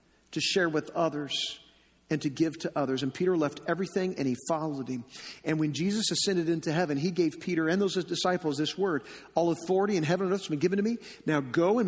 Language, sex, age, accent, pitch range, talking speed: English, male, 40-59, American, 185-265 Hz, 225 wpm